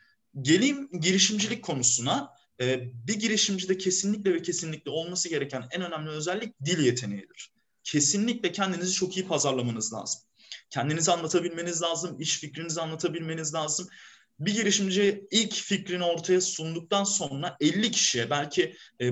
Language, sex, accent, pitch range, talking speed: Turkish, male, native, 140-200 Hz, 125 wpm